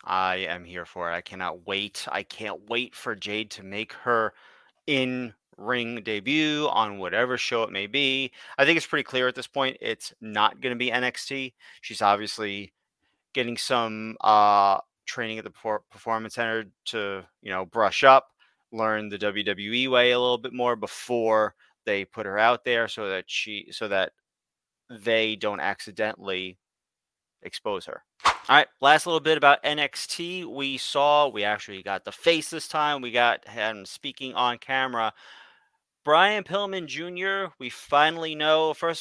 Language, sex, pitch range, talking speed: English, male, 105-140 Hz, 160 wpm